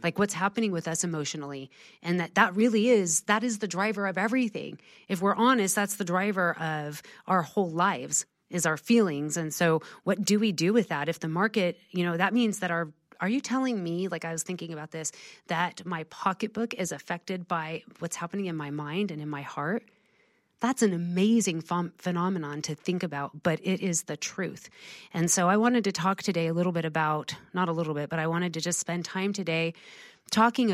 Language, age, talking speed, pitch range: English, 30-49, 210 wpm, 165-195 Hz